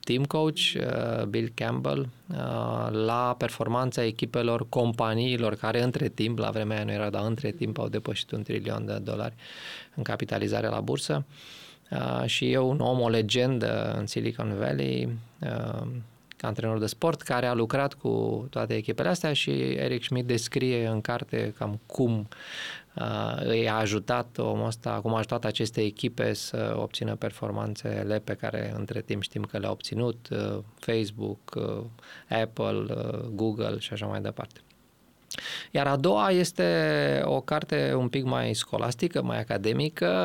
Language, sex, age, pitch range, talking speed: English, male, 20-39, 105-125 Hz, 145 wpm